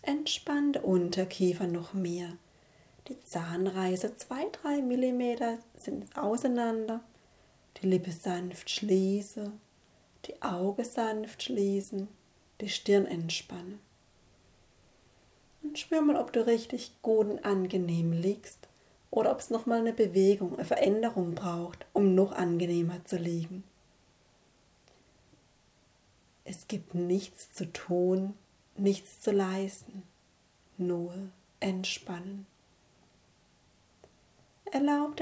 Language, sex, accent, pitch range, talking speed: German, female, German, 180-215 Hz, 95 wpm